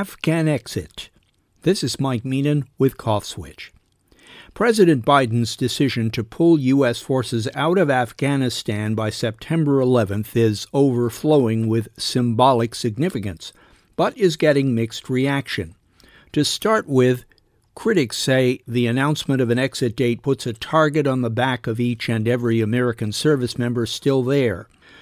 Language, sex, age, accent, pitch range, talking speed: English, male, 50-69, American, 115-145 Hz, 140 wpm